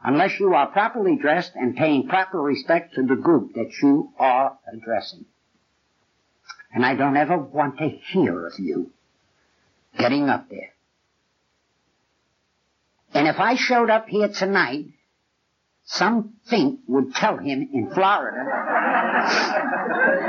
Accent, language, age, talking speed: American, English, 60-79, 125 wpm